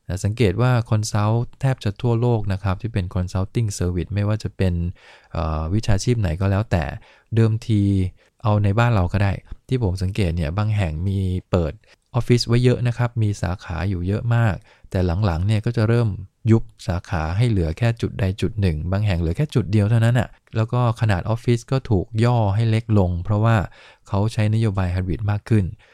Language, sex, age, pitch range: English, male, 20-39, 95-115 Hz